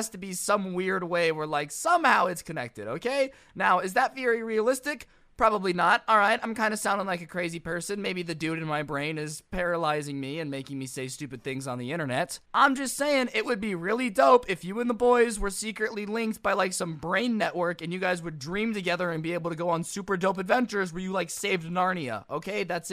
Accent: American